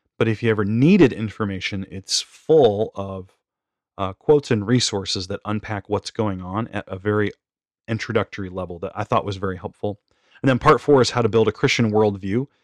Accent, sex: American, male